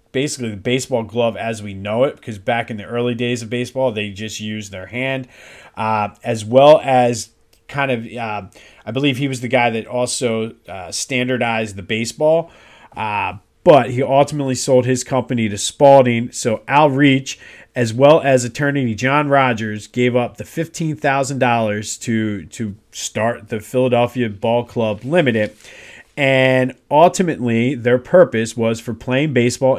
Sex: male